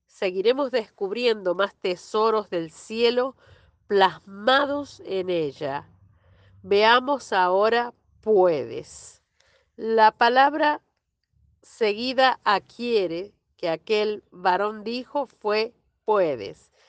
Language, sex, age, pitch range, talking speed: Spanish, female, 40-59, 200-270 Hz, 80 wpm